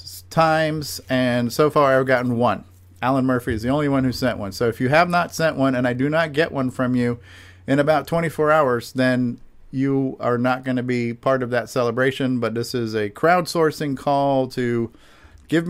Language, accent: English, American